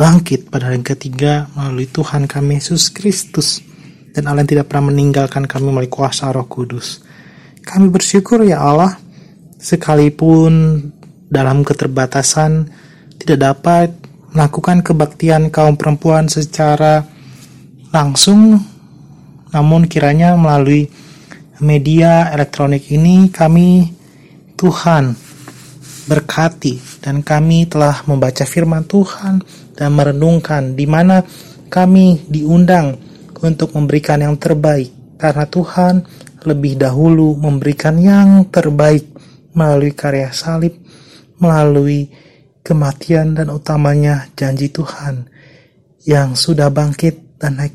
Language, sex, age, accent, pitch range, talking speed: Indonesian, male, 30-49, native, 140-165 Hz, 100 wpm